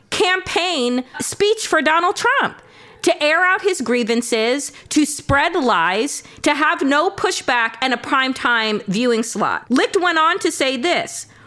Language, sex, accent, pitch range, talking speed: English, female, American, 220-305 Hz, 145 wpm